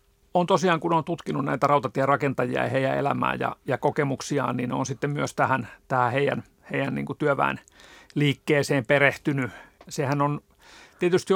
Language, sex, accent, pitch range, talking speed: Finnish, male, native, 135-160 Hz, 155 wpm